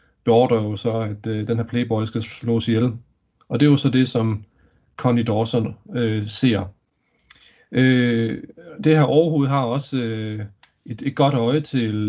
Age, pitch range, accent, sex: 30-49, 115-140 Hz, native, male